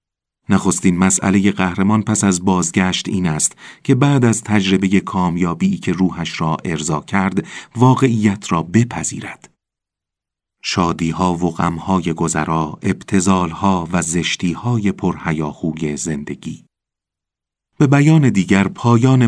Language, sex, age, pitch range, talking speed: Persian, male, 40-59, 85-110 Hz, 105 wpm